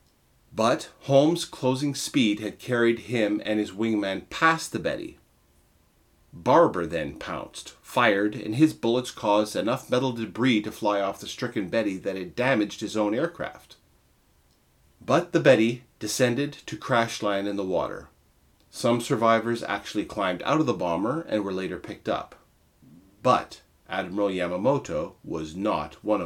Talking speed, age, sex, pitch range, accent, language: 150 wpm, 40-59, male, 95-120 Hz, American, English